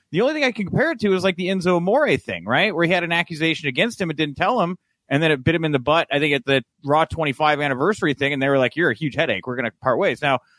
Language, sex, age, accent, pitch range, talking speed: English, male, 30-49, American, 145-205 Hz, 315 wpm